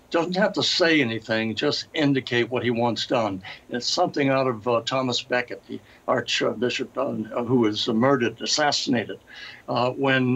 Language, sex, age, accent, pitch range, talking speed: English, male, 60-79, American, 120-145 Hz, 155 wpm